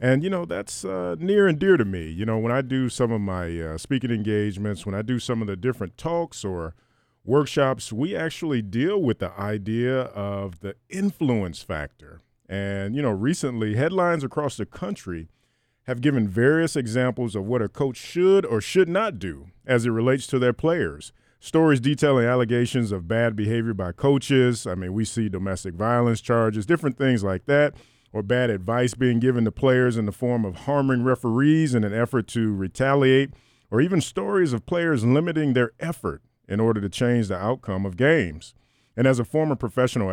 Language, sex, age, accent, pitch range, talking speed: English, male, 40-59, American, 105-140 Hz, 190 wpm